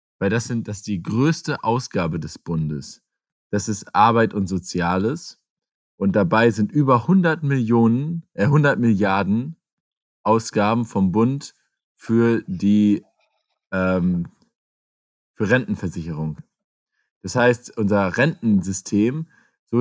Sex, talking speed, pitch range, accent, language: male, 110 wpm, 95-125 Hz, German, German